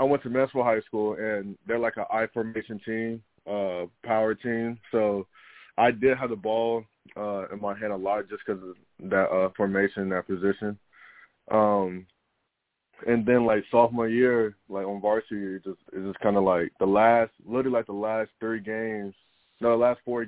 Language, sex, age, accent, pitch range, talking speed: English, male, 20-39, American, 100-115 Hz, 190 wpm